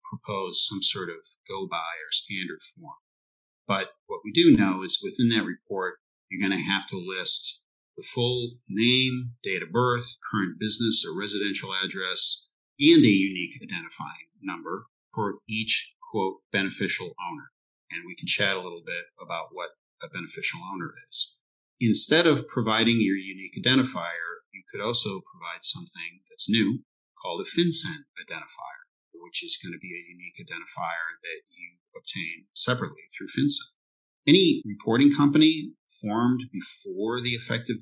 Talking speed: 150 wpm